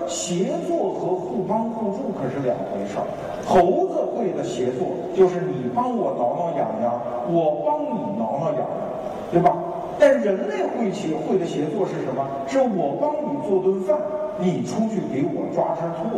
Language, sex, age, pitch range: Chinese, male, 50-69, 175-265 Hz